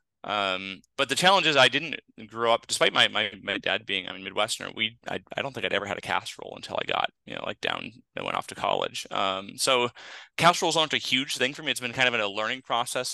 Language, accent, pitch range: English, American, 100-125 Hz